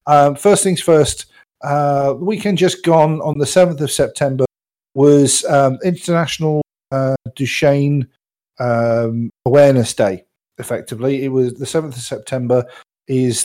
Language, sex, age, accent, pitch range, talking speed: English, male, 50-69, British, 125-160 Hz, 135 wpm